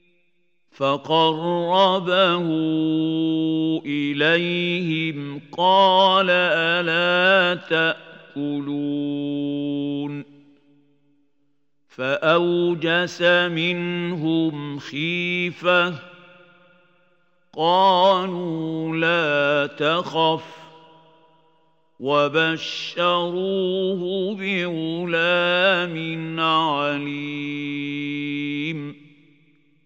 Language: Arabic